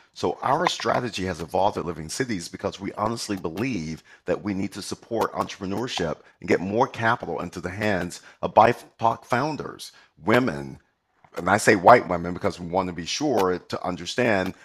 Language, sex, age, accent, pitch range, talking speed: English, male, 40-59, American, 90-115 Hz, 170 wpm